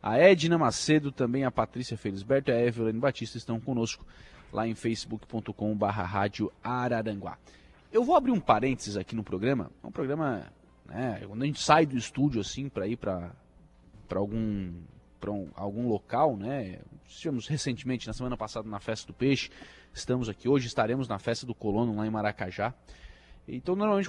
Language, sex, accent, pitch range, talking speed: Portuguese, male, Brazilian, 105-145 Hz, 165 wpm